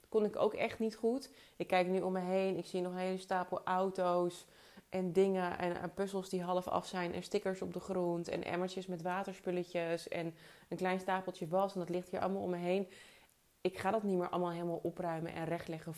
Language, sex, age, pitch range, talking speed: Dutch, female, 30-49, 175-205 Hz, 225 wpm